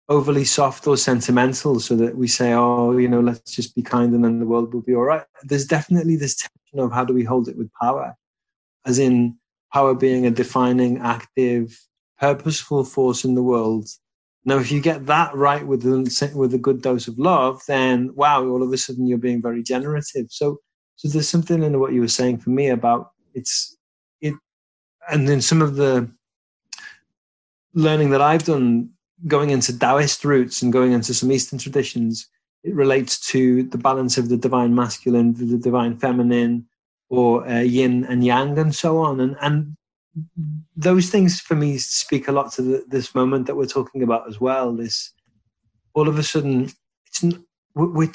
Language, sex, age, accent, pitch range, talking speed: English, male, 30-49, British, 120-145 Hz, 190 wpm